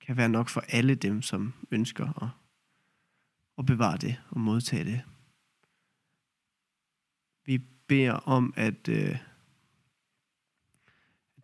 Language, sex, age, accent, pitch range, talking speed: Danish, male, 20-39, native, 115-140 Hz, 105 wpm